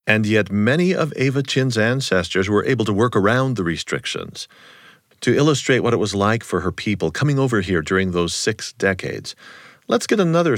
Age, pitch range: 40-59, 100-145 Hz